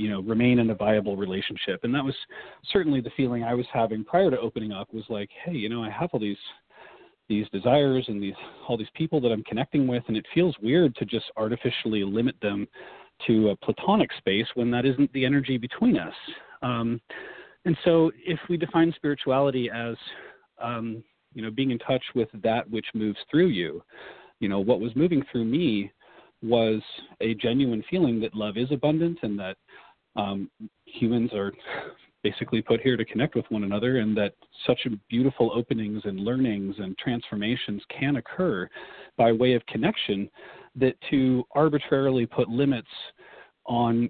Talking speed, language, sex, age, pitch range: 175 wpm, English, male, 40-59, 110-130 Hz